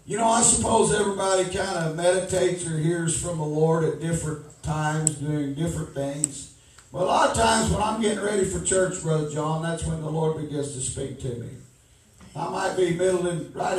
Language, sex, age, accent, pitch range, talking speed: English, male, 50-69, American, 145-185 Hz, 205 wpm